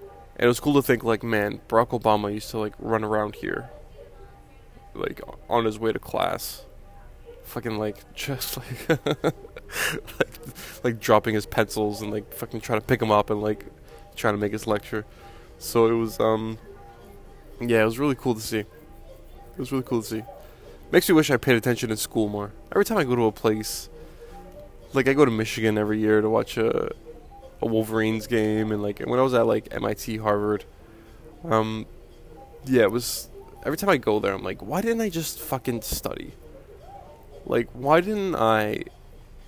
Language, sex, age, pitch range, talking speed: English, male, 20-39, 105-135 Hz, 185 wpm